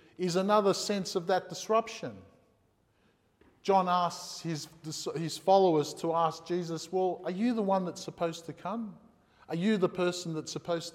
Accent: Australian